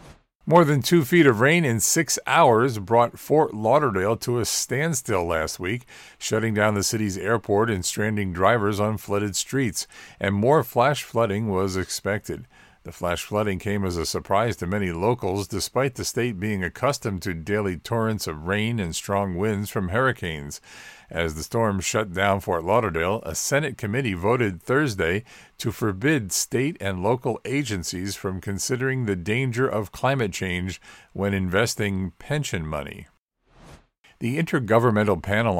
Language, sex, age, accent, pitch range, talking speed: English, male, 50-69, American, 95-120 Hz, 155 wpm